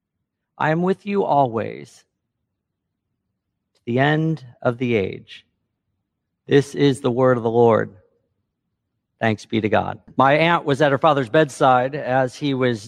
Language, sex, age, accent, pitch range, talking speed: English, male, 50-69, American, 125-185 Hz, 150 wpm